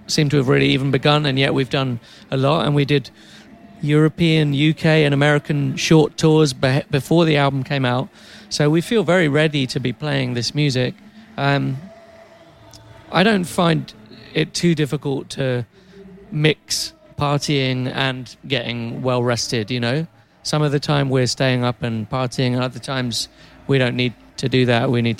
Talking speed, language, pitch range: 170 wpm, French, 125-150 Hz